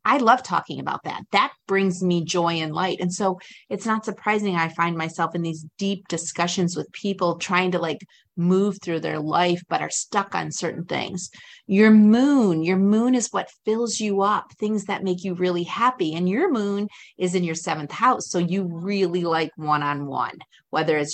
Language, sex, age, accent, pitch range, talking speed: English, female, 30-49, American, 165-215 Hz, 195 wpm